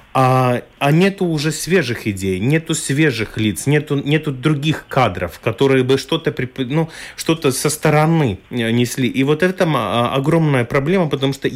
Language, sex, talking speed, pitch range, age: Russian, male, 145 wpm, 125-155 Hz, 30-49